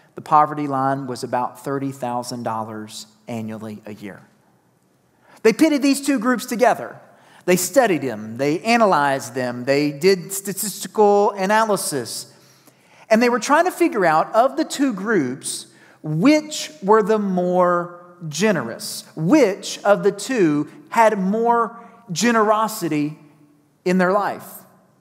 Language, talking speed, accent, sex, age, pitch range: English, 120 wpm, American, male, 40-59, 150-225 Hz